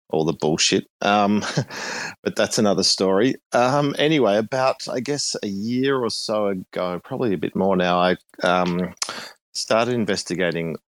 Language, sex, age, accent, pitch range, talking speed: English, male, 30-49, Australian, 90-125 Hz, 150 wpm